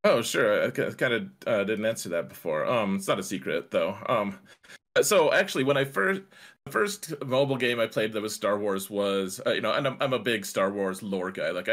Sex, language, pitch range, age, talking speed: male, English, 95-140 Hz, 30-49, 235 wpm